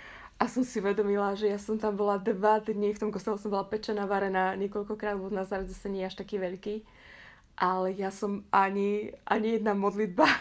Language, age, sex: Slovak, 20-39, female